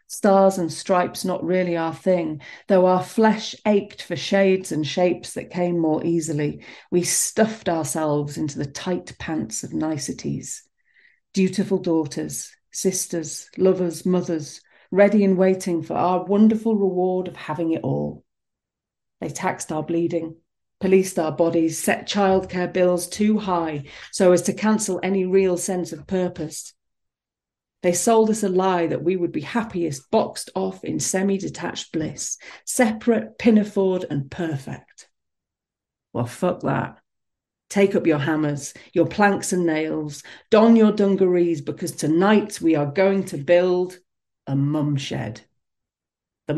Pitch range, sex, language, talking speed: 160-195 Hz, female, English, 140 wpm